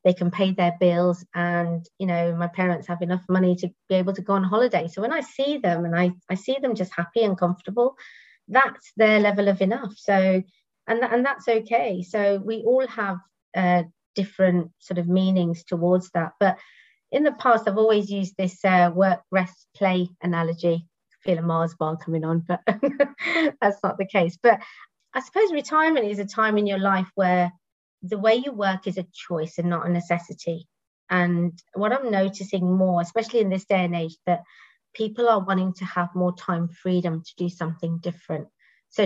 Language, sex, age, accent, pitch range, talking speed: English, female, 30-49, British, 175-210 Hz, 195 wpm